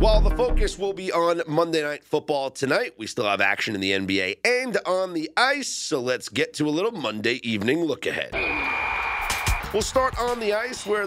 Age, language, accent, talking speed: 40-59, English, American, 200 wpm